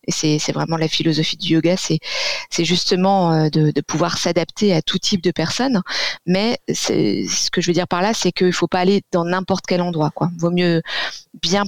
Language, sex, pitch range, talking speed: French, female, 165-190 Hz, 220 wpm